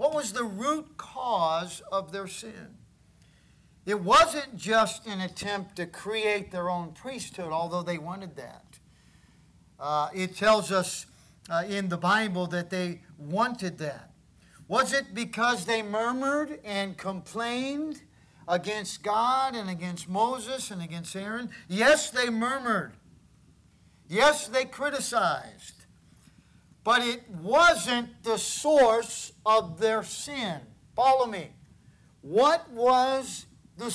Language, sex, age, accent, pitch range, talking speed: English, male, 50-69, American, 185-260 Hz, 120 wpm